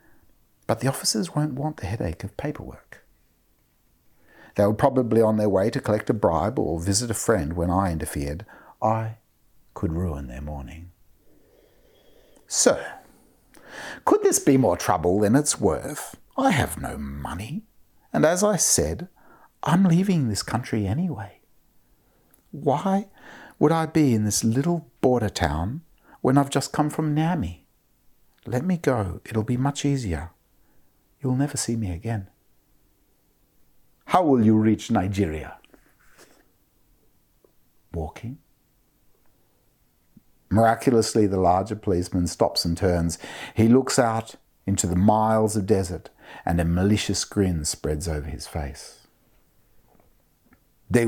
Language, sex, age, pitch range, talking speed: Dutch, male, 60-79, 85-135 Hz, 130 wpm